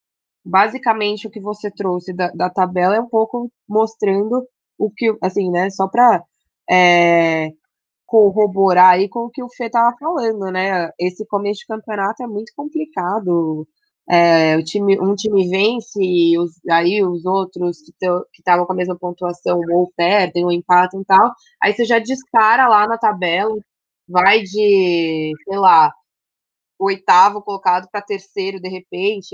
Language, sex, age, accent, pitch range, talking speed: Portuguese, female, 20-39, Brazilian, 180-225 Hz, 160 wpm